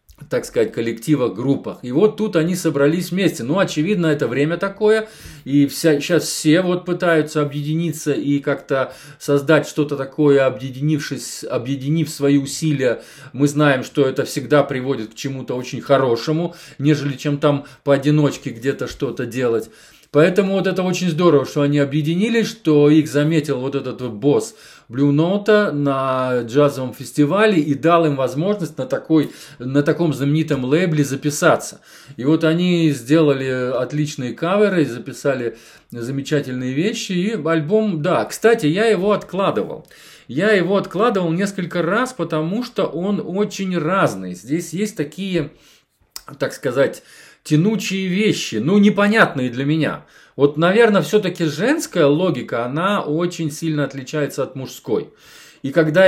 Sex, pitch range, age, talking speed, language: male, 140-175 Hz, 20-39, 135 wpm, Russian